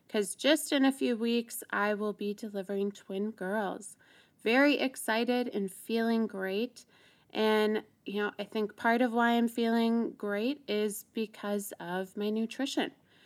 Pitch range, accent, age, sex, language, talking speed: 195-235 Hz, American, 20-39, female, English, 150 wpm